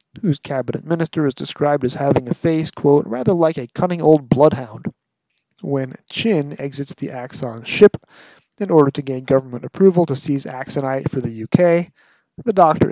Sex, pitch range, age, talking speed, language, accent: male, 130-160 Hz, 30-49, 165 wpm, English, American